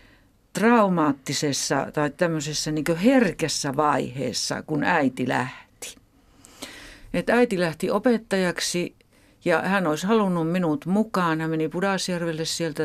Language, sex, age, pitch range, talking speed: Finnish, female, 50-69, 145-200 Hz, 105 wpm